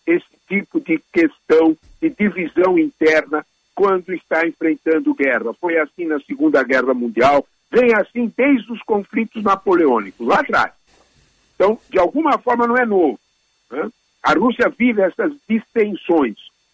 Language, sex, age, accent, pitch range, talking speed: Portuguese, male, 60-79, Brazilian, 170-250 Hz, 135 wpm